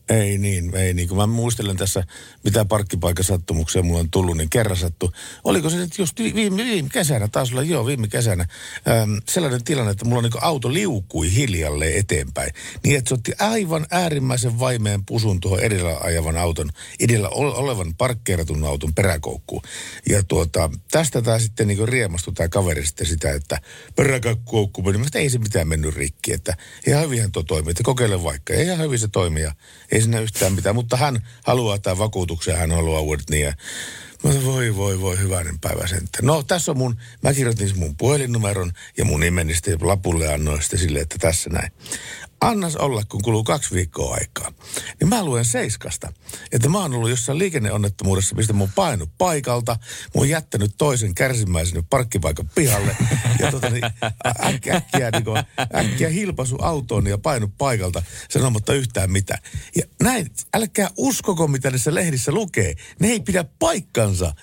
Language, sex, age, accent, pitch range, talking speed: Finnish, male, 60-79, native, 90-130 Hz, 165 wpm